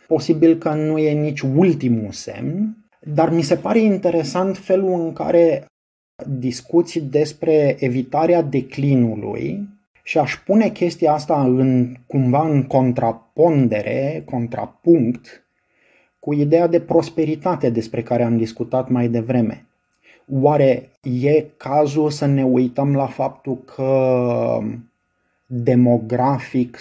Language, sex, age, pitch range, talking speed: Romanian, male, 30-49, 125-160 Hz, 110 wpm